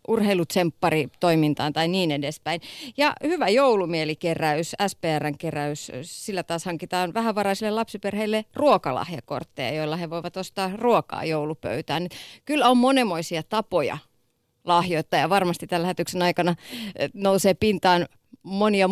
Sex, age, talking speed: female, 30-49, 110 wpm